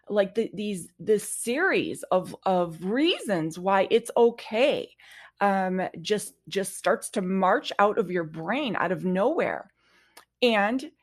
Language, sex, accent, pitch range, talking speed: English, female, American, 175-215 Hz, 130 wpm